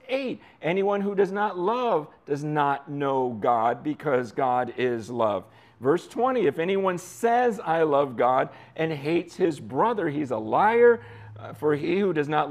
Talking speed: 170 wpm